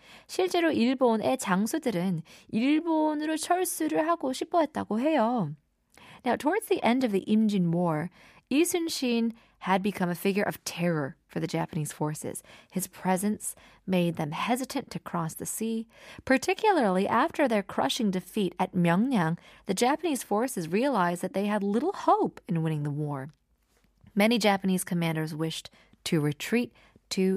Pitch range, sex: 180-270 Hz, female